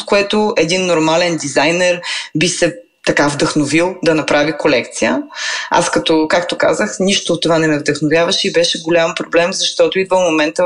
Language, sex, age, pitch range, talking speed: Bulgarian, female, 20-39, 165-215 Hz, 160 wpm